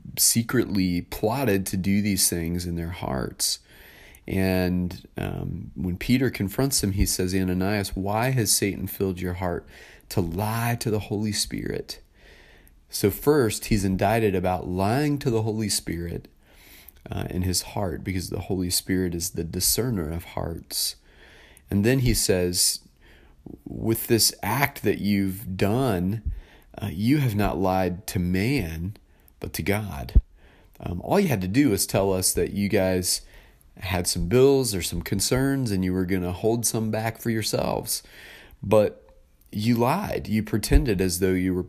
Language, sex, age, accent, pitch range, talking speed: English, male, 30-49, American, 90-105 Hz, 160 wpm